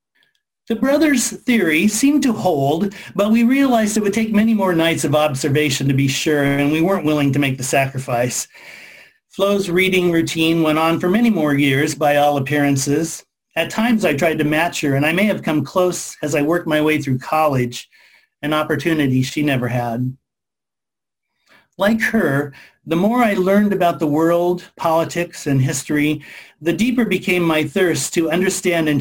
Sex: male